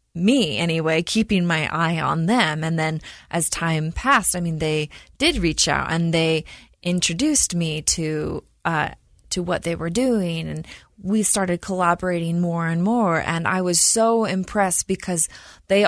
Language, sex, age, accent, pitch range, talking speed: English, female, 20-39, American, 170-225 Hz, 165 wpm